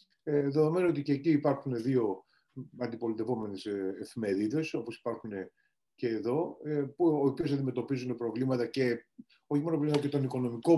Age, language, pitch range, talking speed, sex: 30-49, Greek, 120-155 Hz, 130 wpm, male